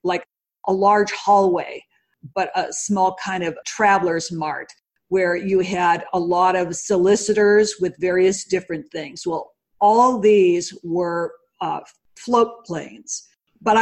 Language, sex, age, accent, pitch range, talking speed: English, female, 50-69, American, 185-230 Hz, 130 wpm